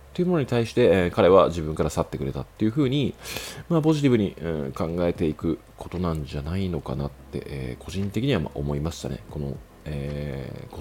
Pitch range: 75-95 Hz